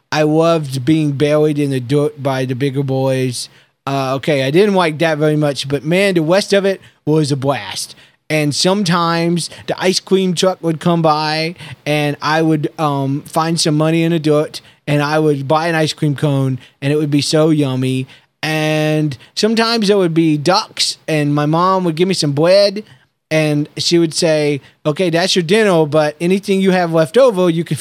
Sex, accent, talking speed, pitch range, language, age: male, American, 195 wpm, 140-175 Hz, English, 20-39